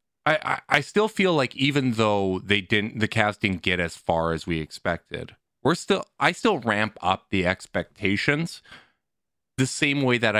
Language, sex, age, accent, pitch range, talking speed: English, male, 30-49, American, 85-120 Hz, 175 wpm